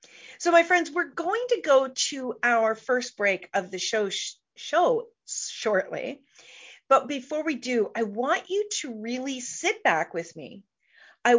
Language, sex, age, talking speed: English, female, 40-59, 160 wpm